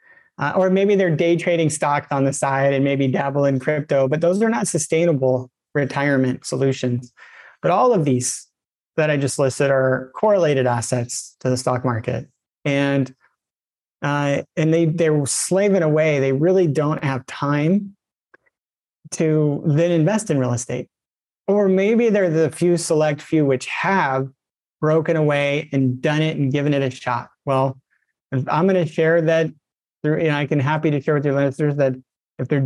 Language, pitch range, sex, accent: English, 135-165 Hz, male, American